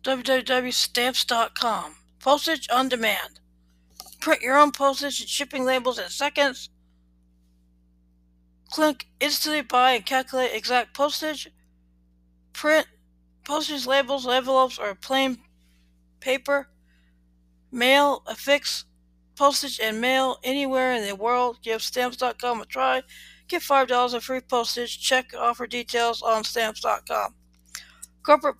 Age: 60-79